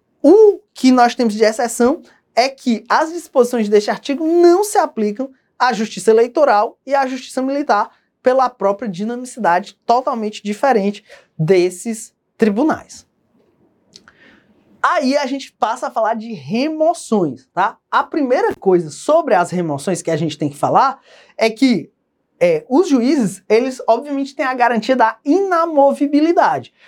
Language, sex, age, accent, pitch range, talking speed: English, male, 20-39, Brazilian, 210-280 Hz, 135 wpm